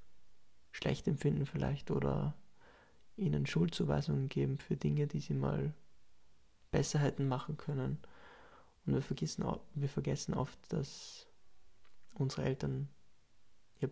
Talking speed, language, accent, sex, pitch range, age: 100 wpm, German, German, male, 95-155 Hz, 20-39